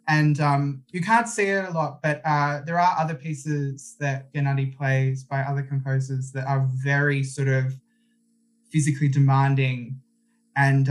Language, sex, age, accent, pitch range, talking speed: English, male, 20-39, Australian, 135-165 Hz, 155 wpm